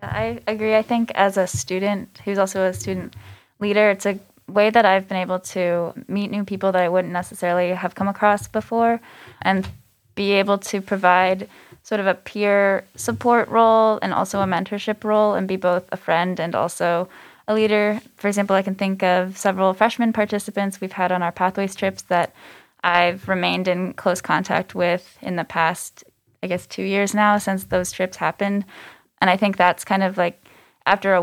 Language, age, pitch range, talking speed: English, 10-29, 180-205 Hz, 190 wpm